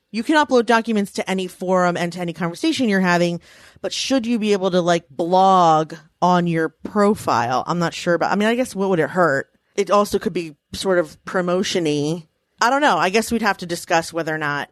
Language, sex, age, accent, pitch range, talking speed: English, female, 30-49, American, 165-205 Hz, 225 wpm